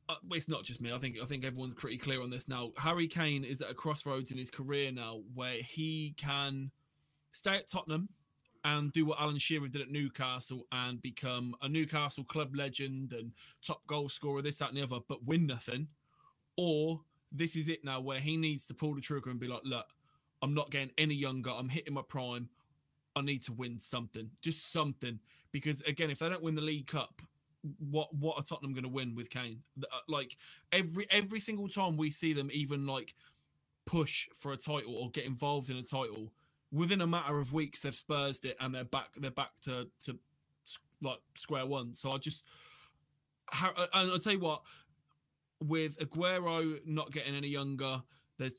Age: 20-39